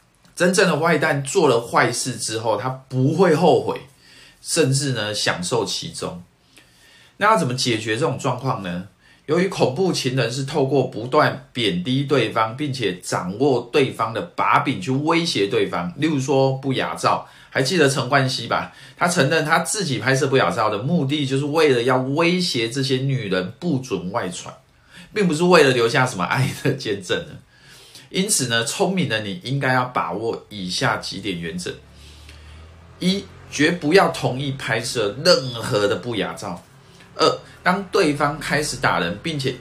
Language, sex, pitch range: Chinese, male, 110-150 Hz